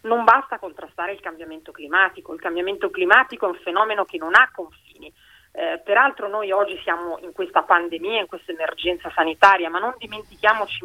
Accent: native